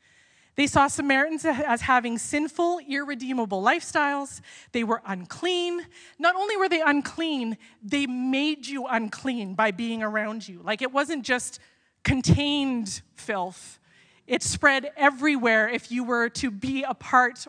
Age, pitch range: 30-49, 210-280 Hz